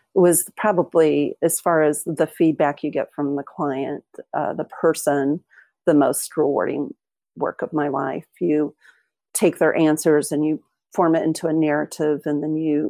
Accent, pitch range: American, 160-195 Hz